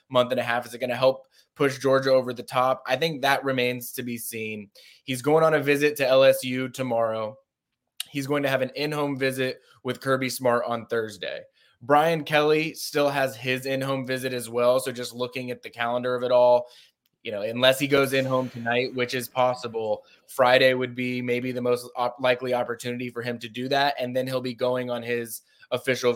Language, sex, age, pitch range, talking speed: English, male, 20-39, 120-135 Hz, 210 wpm